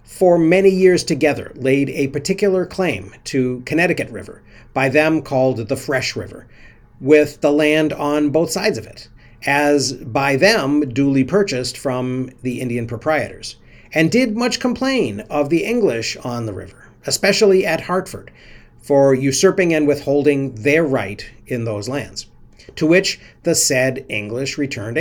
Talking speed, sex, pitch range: 150 wpm, male, 120-165 Hz